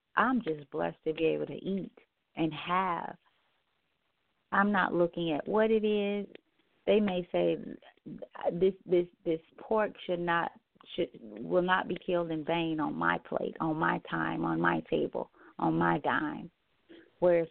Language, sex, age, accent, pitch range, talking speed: English, female, 40-59, American, 160-205 Hz, 160 wpm